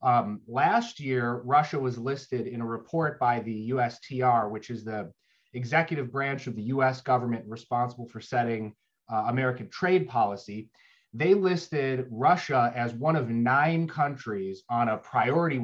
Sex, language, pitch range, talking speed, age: male, English, 120-145 Hz, 150 wpm, 30-49